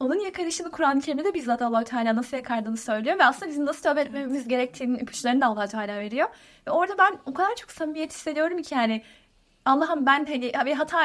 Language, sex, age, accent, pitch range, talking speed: Turkish, female, 30-49, native, 235-315 Hz, 195 wpm